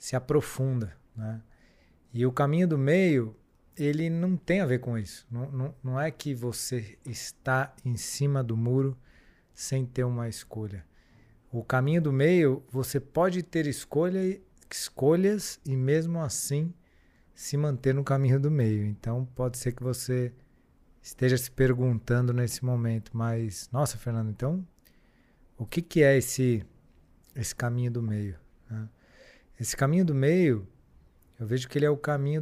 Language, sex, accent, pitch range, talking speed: Portuguese, male, Brazilian, 115-145 Hz, 150 wpm